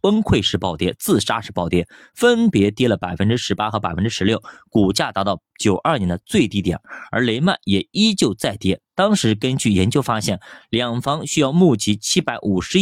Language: Chinese